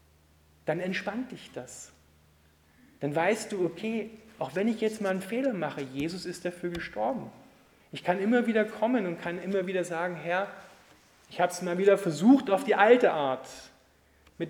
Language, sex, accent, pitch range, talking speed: German, male, German, 145-190 Hz, 175 wpm